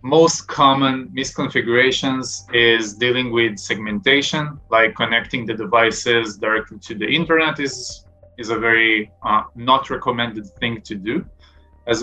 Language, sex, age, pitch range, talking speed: English, male, 20-39, 110-140 Hz, 130 wpm